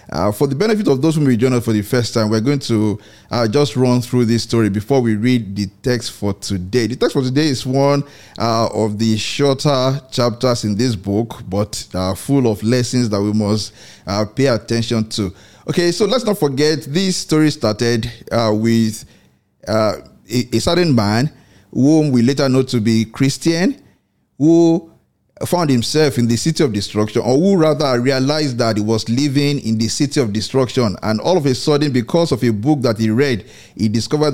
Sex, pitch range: male, 110-140 Hz